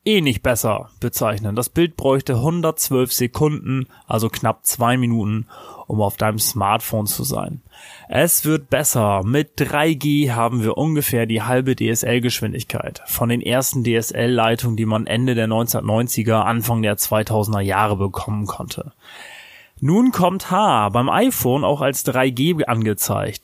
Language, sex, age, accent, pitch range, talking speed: German, male, 30-49, German, 110-140 Hz, 140 wpm